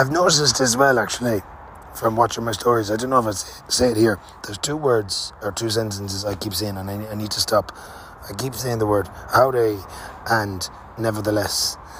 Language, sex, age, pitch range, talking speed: English, male, 20-39, 90-115 Hz, 200 wpm